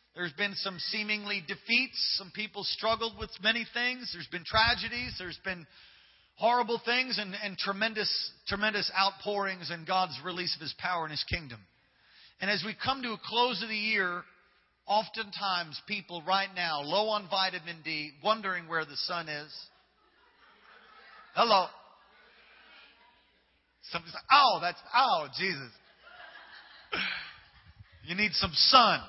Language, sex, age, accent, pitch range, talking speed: English, male, 40-59, American, 160-210 Hz, 135 wpm